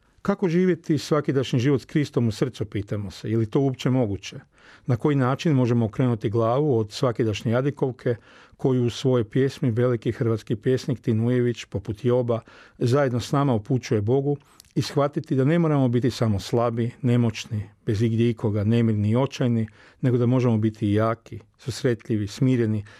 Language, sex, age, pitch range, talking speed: Croatian, male, 40-59, 115-135 Hz, 165 wpm